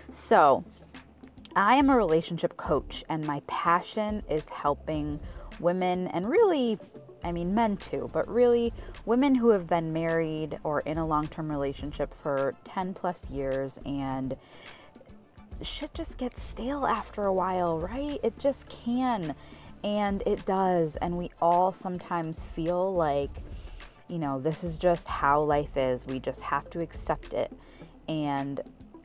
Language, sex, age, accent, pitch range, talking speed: English, female, 20-39, American, 150-190 Hz, 145 wpm